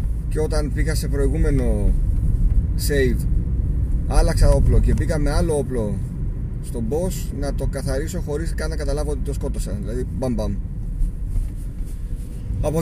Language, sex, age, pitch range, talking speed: Greek, male, 30-49, 105-140 Hz, 135 wpm